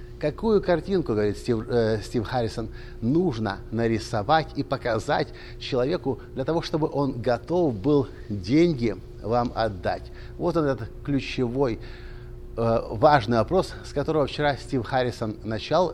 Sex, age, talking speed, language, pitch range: male, 50-69, 120 wpm, Russian, 110-155 Hz